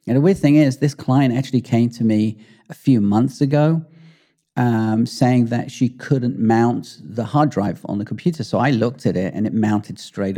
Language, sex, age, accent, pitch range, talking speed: English, male, 40-59, British, 105-135 Hz, 210 wpm